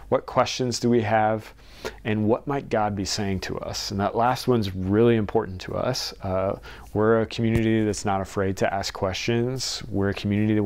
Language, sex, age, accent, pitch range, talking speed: English, male, 30-49, American, 100-120 Hz, 195 wpm